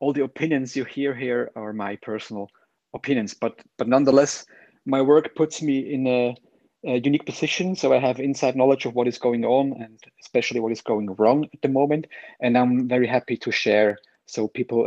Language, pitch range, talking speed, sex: English, 120-145 Hz, 200 wpm, male